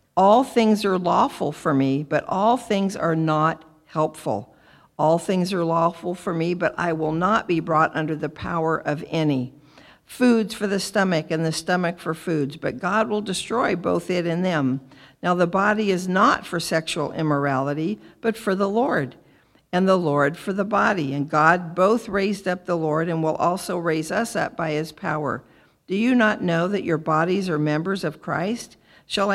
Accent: American